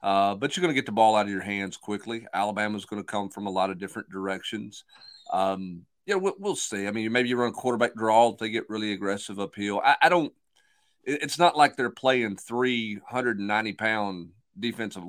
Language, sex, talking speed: English, male, 205 wpm